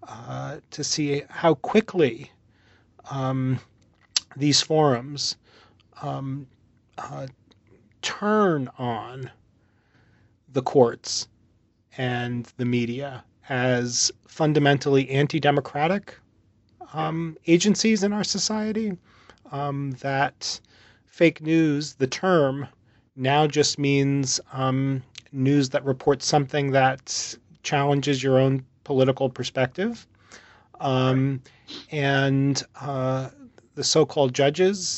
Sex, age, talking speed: male, 30-49, 85 wpm